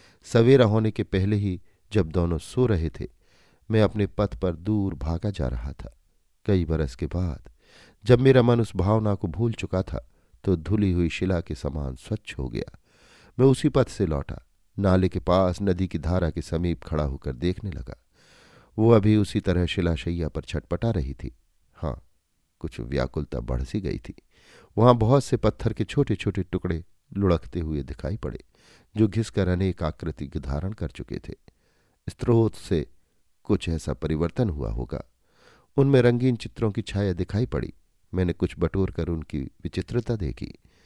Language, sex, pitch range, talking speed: Hindi, male, 80-105 Hz, 170 wpm